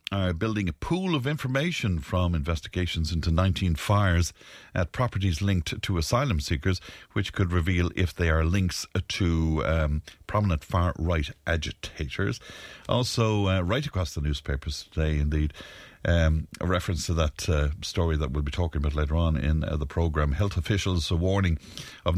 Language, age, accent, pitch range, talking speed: English, 60-79, Irish, 80-100 Hz, 160 wpm